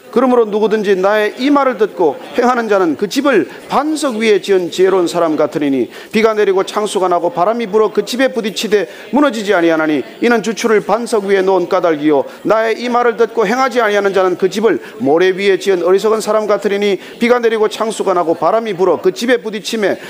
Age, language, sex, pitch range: 40-59, Korean, male, 200-270 Hz